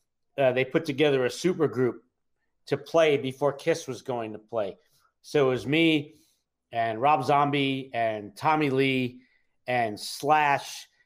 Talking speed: 145 wpm